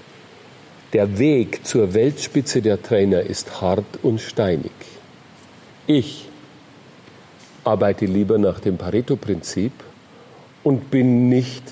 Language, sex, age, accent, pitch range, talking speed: German, male, 40-59, German, 105-145 Hz, 95 wpm